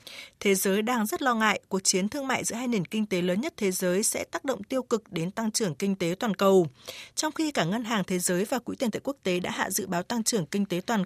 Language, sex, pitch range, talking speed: Vietnamese, female, 190-245 Hz, 290 wpm